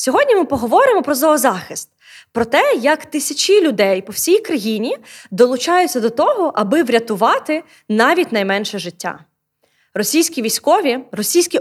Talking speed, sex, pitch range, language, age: 125 wpm, female, 230-305 Hz, Ukrainian, 20-39